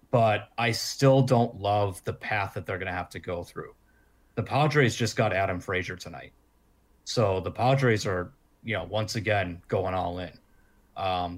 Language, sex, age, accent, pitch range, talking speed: English, male, 30-49, American, 90-110 Hz, 180 wpm